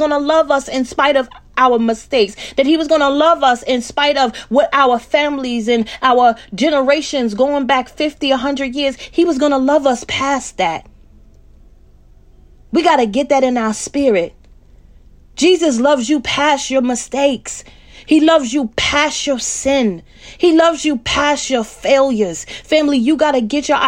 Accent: American